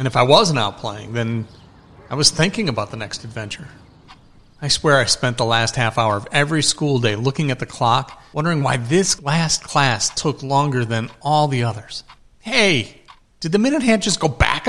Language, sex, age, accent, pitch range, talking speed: English, male, 40-59, American, 115-140 Hz, 200 wpm